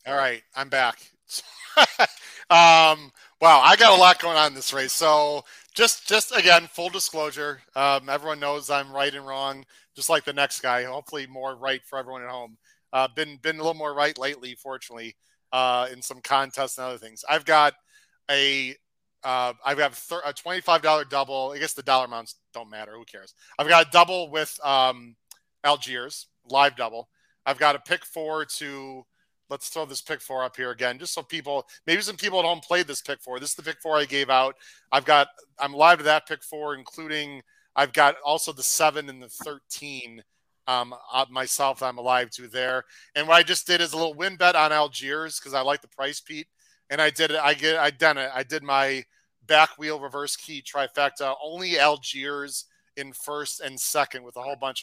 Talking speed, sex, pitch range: 205 wpm, male, 130-155 Hz